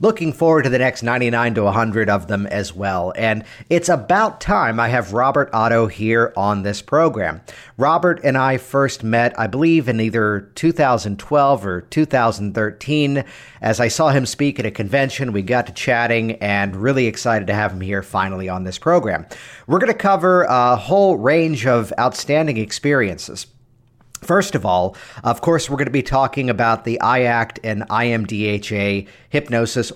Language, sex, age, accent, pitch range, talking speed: English, male, 50-69, American, 110-145 Hz, 170 wpm